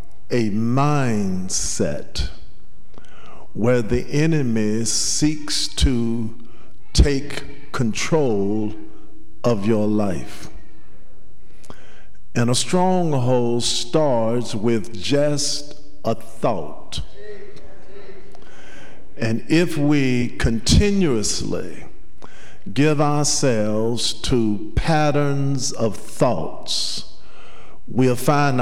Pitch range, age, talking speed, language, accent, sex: 105-145 Hz, 50-69, 65 wpm, English, American, male